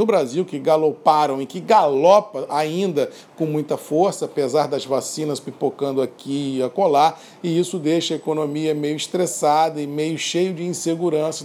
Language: Portuguese